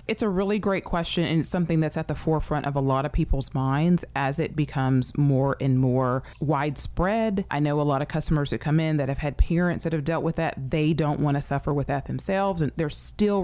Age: 30-49